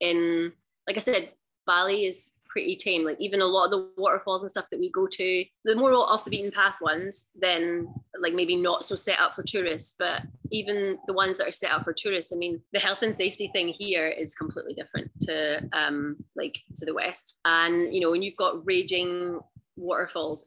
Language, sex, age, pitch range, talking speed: English, female, 20-39, 165-205 Hz, 210 wpm